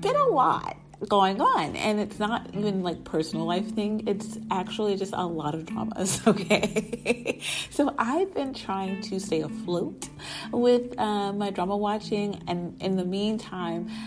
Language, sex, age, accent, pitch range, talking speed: English, female, 30-49, American, 165-215 Hz, 160 wpm